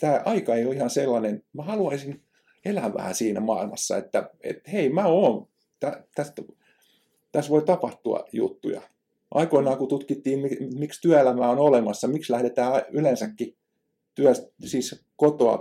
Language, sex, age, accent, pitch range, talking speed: Finnish, male, 50-69, native, 120-175 Hz, 140 wpm